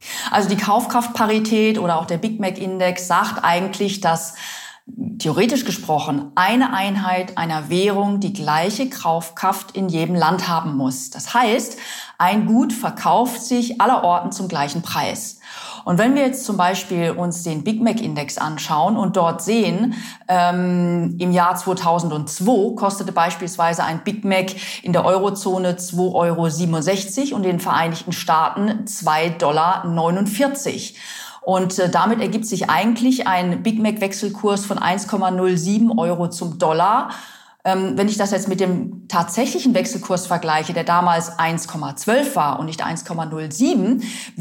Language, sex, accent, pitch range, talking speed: German, female, German, 170-215 Hz, 135 wpm